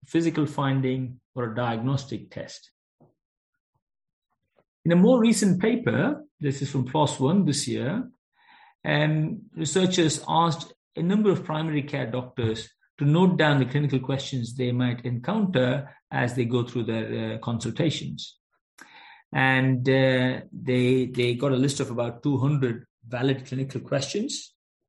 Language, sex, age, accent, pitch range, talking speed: English, male, 50-69, Indian, 125-160 Hz, 135 wpm